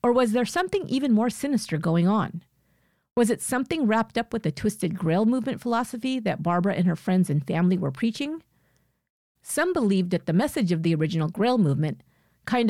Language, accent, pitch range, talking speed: English, American, 170-240 Hz, 190 wpm